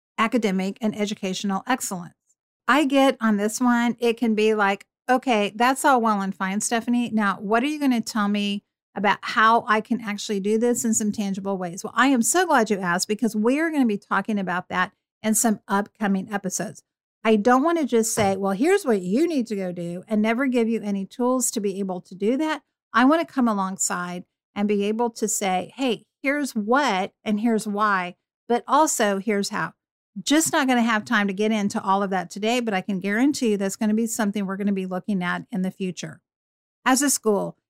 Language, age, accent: English, 50-69, American